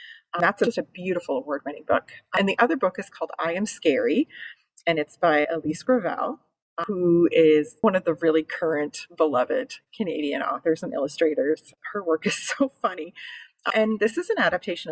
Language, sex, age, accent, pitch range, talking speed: English, female, 30-49, American, 160-255 Hz, 180 wpm